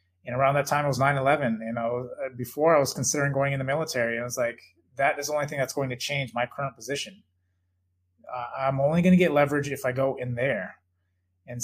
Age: 30-49